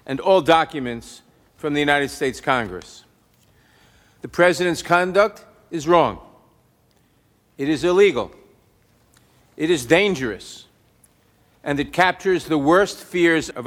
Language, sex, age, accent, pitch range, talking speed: English, male, 50-69, American, 140-195 Hz, 115 wpm